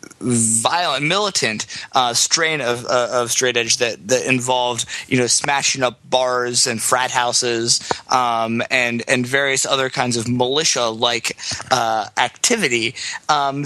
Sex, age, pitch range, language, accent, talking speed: male, 20-39, 125-155 Hz, English, American, 140 wpm